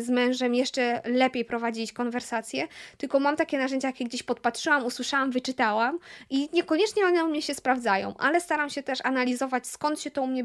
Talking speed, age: 185 wpm, 20-39